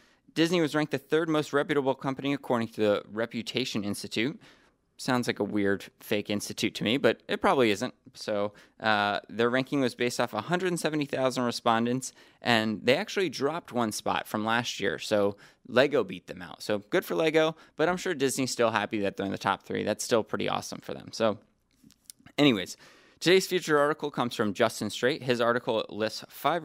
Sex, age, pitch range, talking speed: male, 20-39, 110-145 Hz, 185 wpm